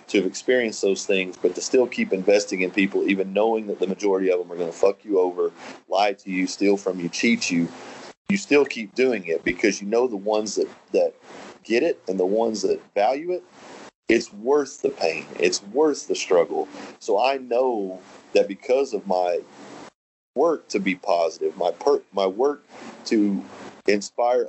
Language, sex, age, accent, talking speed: English, male, 40-59, American, 190 wpm